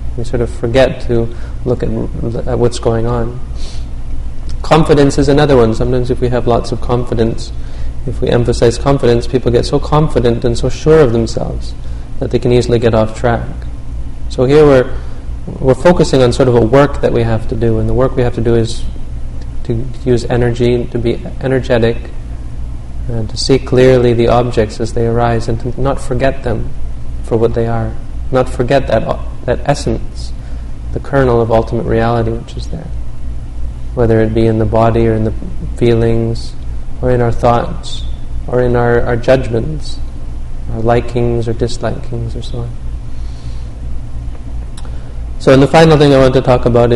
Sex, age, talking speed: male, 30-49, 180 wpm